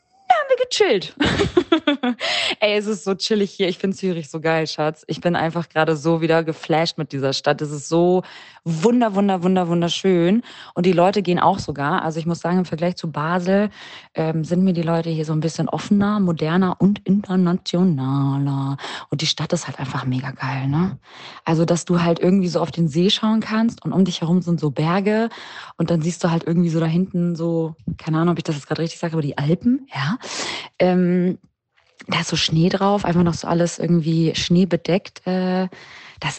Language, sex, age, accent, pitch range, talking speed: German, female, 20-39, German, 160-195 Hz, 200 wpm